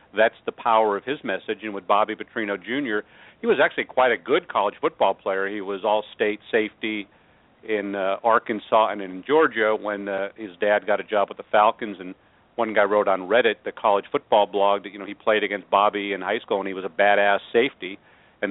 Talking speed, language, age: 215 wpm, English, 50-69